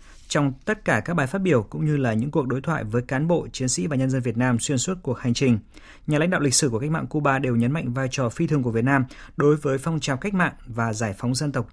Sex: male